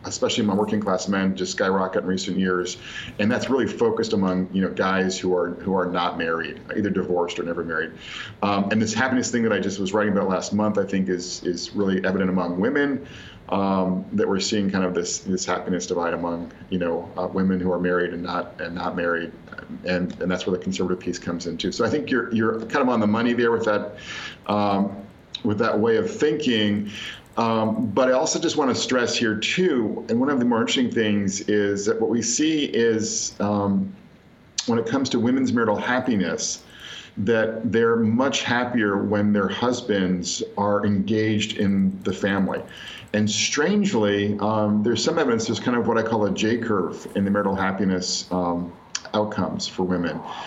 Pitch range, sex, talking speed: 95-115 Hz, male, 195 wpm